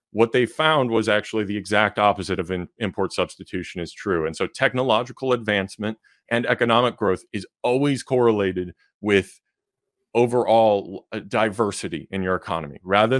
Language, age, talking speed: English, 30-49, 145 wpm